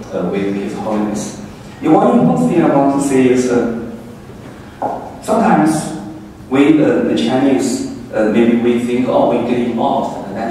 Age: 30-49